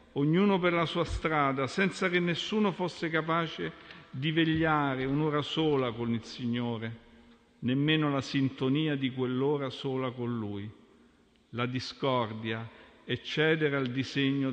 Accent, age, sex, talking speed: native, 50-69, male, 130 wpm